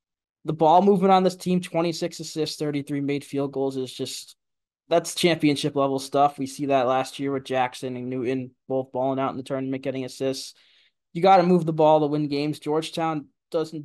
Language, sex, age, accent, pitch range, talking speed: English, male, 20-39, American, 135-155 Hz, 195 wpm